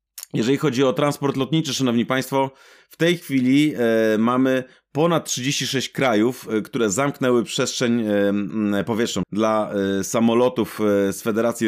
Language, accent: Polish, native